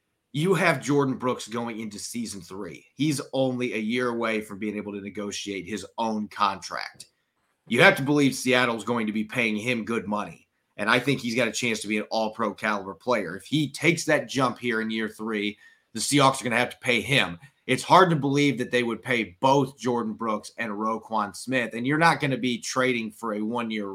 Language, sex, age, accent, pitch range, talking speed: English, male, 30-49, American, 110-135 Hz, 225 wpm